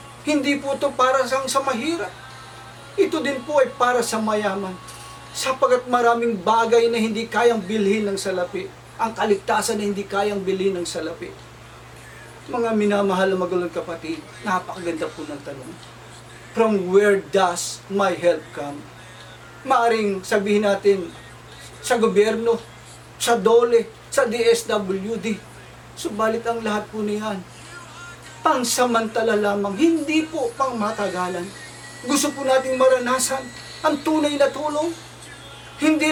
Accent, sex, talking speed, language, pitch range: native, male, 125 wpm, Filipino, 195-265 Hz